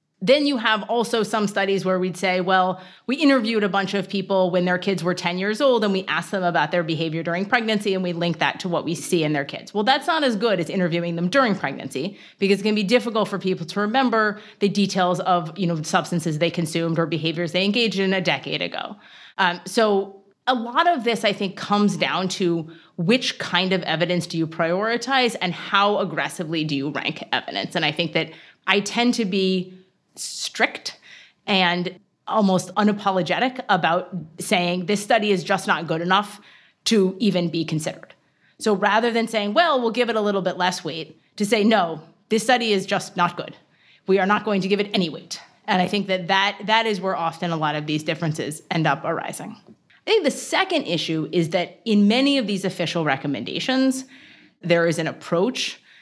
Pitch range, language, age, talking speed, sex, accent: 170-215 Hz, English, 30-49, 210 wpm, female, American